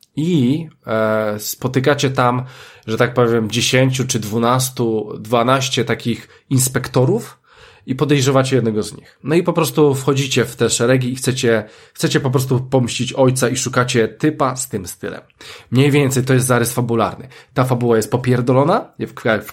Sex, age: male, 20-39